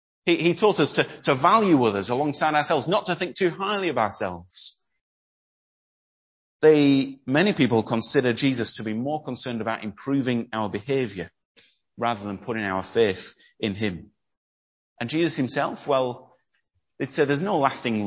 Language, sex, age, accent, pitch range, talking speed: English, male, 30-49, British, 105-135 Hz, 155 wpm